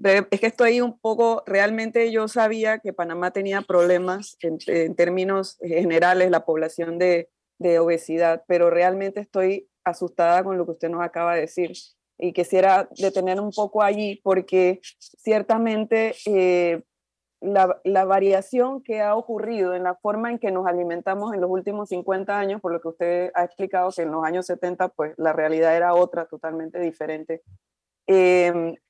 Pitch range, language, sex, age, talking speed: 175-210 Hz, Spanish, female, 20-39, 165 wpm